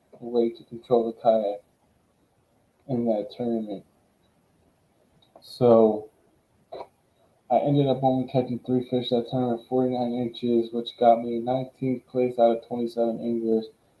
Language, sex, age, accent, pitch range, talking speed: English, male, 20-39, American, 115-125 Hz, 125 wpm